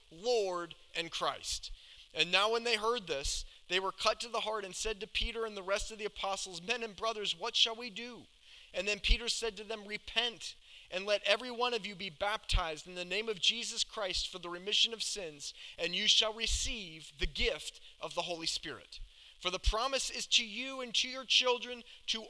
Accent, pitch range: American, 180-225 Hz